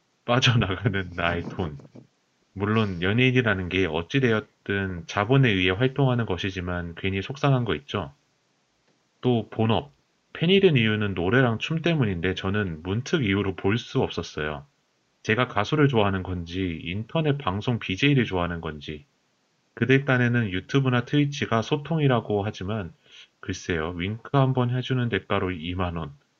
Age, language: 30-49, Korean